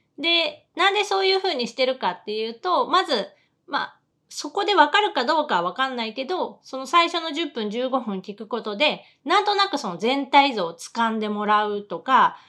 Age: 30-49